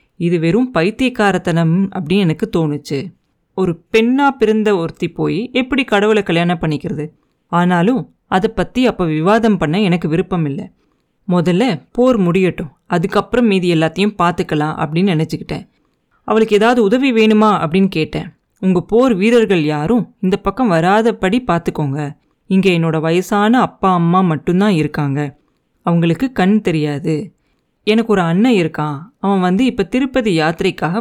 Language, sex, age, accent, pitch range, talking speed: Tamil, female, 30-49, native, 165-220 Hz, 130 wpm